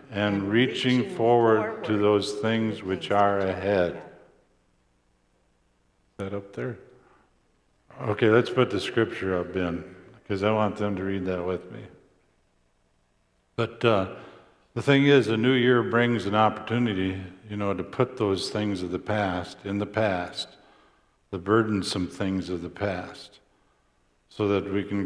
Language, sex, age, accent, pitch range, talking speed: English, male, 50-69, American, 95-110 Hz, 150 wpm